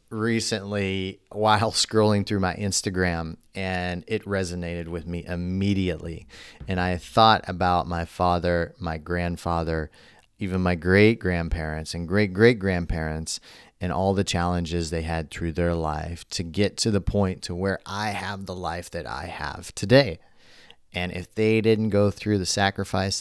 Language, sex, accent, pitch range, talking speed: English, male, American, 85-100 Hz, 145 wpm